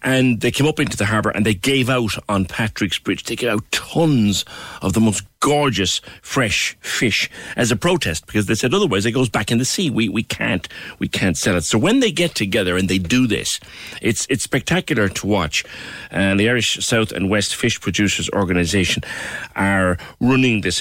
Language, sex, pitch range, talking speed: English, male, 95-120 Hz, 205 wpm